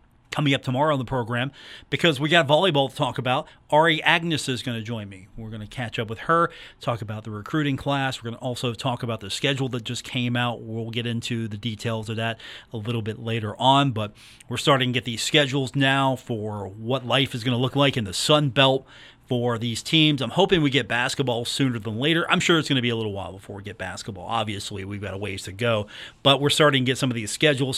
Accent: American